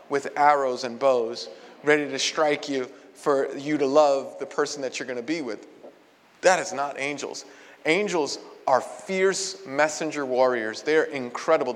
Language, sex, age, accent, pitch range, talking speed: English, male, 30-49, American, 140-185 Hz, 155 wpm